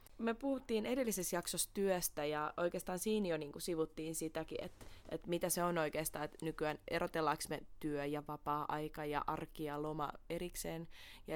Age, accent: 20-39, native